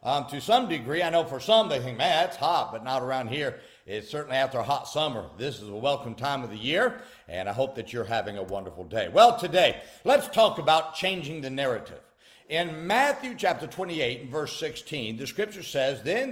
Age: 50-69